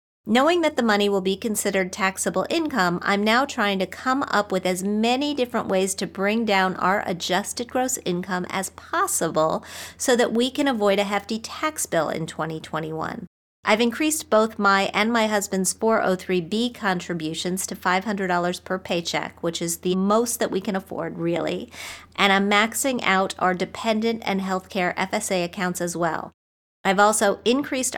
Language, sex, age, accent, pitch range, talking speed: English, female, 40-59, American, 180-225 Hz, 165 wpm